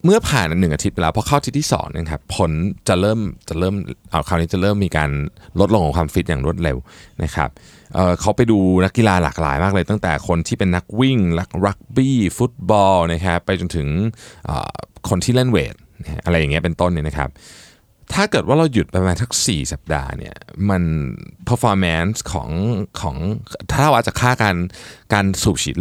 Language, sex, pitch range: Thai, male, 80-110 Hz